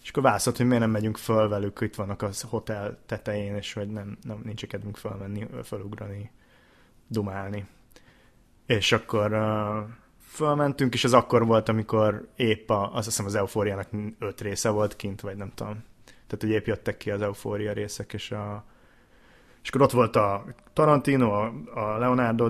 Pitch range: 105-120 Hz